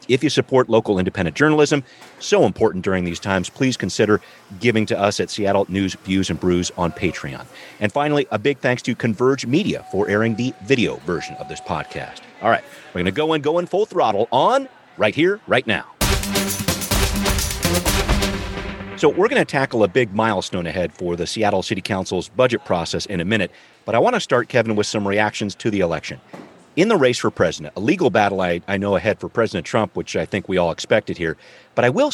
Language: English